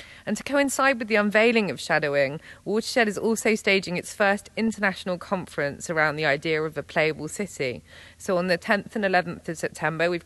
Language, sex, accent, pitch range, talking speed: English, female, British, 160-200 Hz, 185 wpm